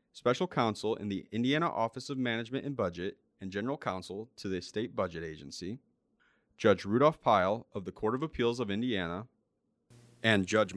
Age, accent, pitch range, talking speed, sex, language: 30-49, American, 95-125 Hz, 165 wpm, male, English